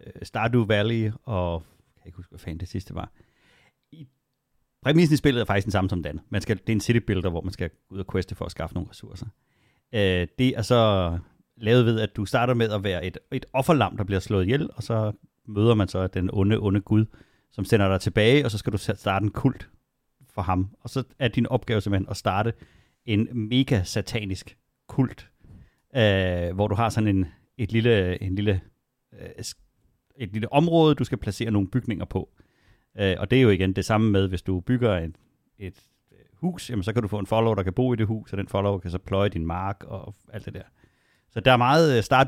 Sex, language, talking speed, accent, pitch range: male, Danish, 215 wpm, native, 95-120 Hz